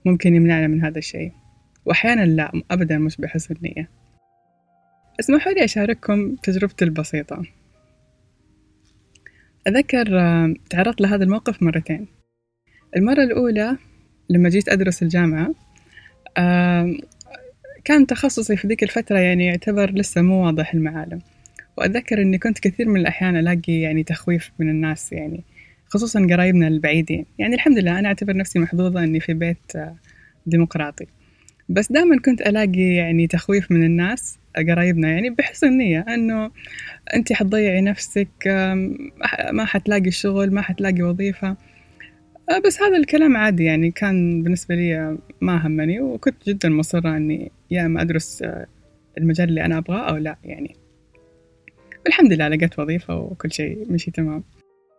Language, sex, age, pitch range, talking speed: Arabic, female, 20-39, 160-205 Hz, 130 wpm